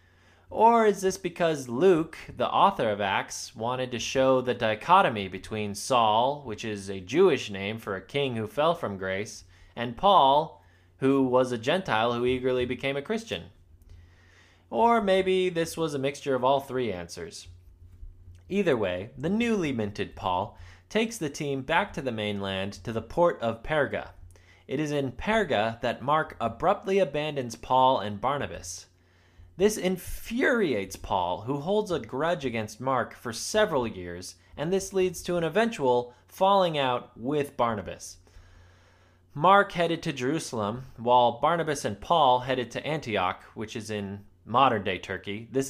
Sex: male